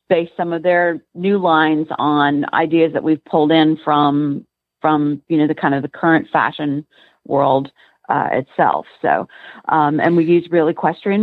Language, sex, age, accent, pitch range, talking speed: English, female, 40-59, American, 155-175 Hz, 170 wpm